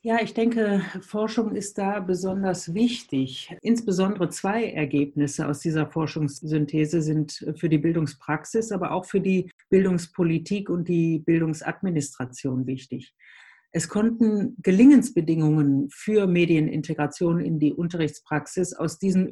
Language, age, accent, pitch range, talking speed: German, 60-79, German, 150-195 Hz, 115 wpm